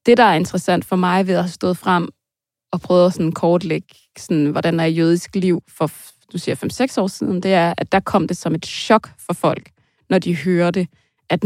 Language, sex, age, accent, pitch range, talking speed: Danish, female, 20-39, native, 165-205 Hz, 220 wpm